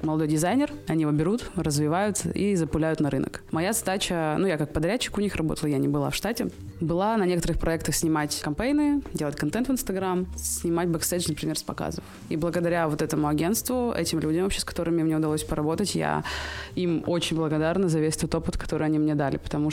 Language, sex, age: Russian, female, 20-39